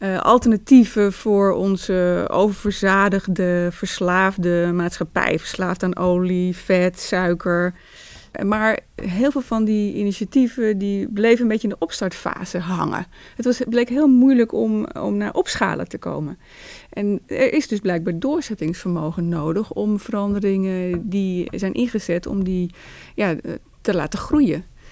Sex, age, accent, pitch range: female, 30-49, Dutch, 180-225 Hz